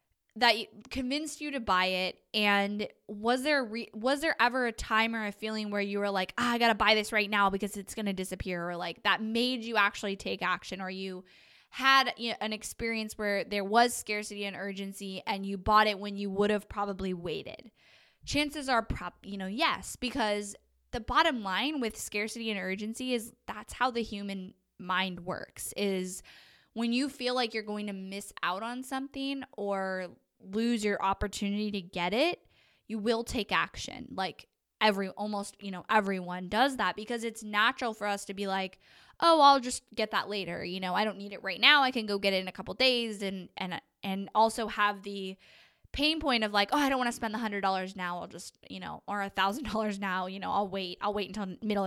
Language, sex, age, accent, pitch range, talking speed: English, female, 10-29, American, 195-235 Hz, 215 wpm